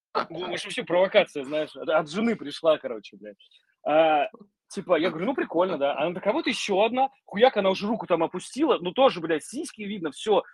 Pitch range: 150-220 Hz